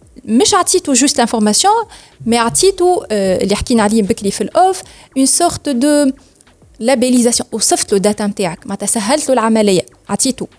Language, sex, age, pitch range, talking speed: Arabic, female, 30-49, 210-275 Hz, 100 wpm